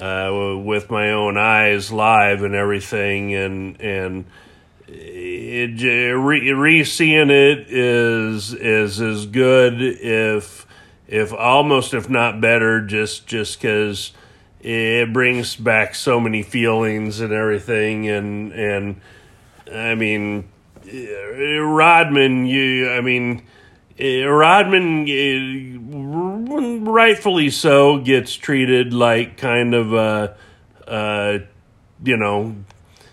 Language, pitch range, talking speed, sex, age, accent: English, 105-130 Hz, 100 wpm, male, 40-59, American